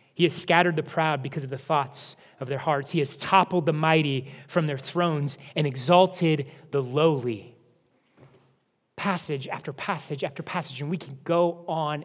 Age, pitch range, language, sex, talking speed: 30-49, 155-210 Hz, English, male, 170 wpm